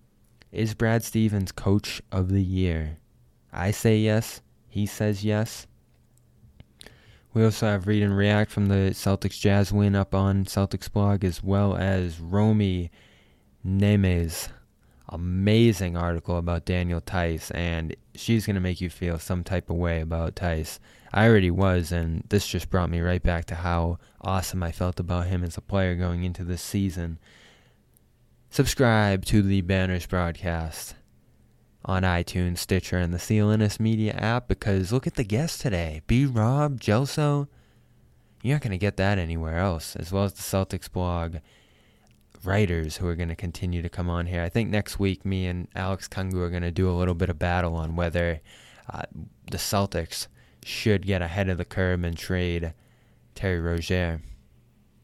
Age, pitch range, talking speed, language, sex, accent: 20-39, 85-105 Hz, 165 wpm, English, male, American